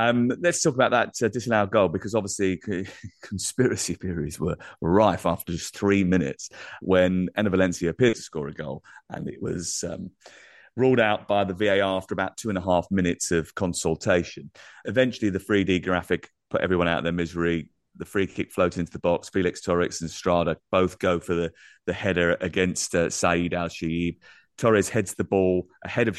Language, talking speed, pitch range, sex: English, 190 wpm, 85-105 Hz, male